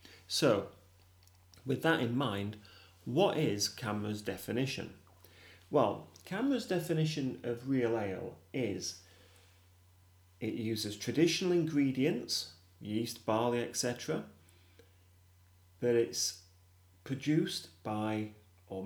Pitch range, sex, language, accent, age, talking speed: 90-140 Hz, male, English, British, 30-49, 90 wpm